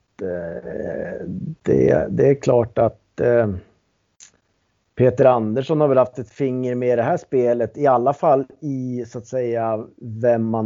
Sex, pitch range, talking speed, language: male, 105-135 Hz, 140 wpm, Swedish